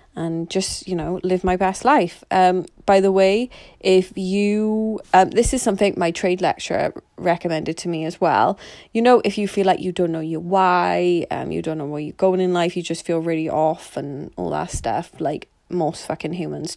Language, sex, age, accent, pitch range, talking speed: English, female, 20-39, British, 165-185 Hz, 210 wpm